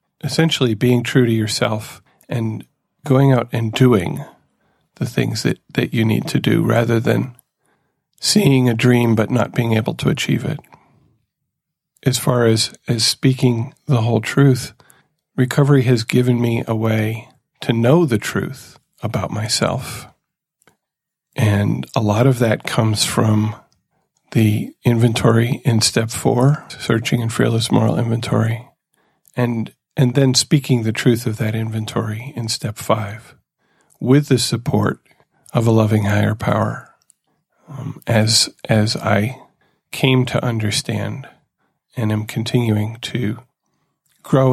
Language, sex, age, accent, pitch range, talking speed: English, male, 40-59, American, 110-130 Hz, 135 wpm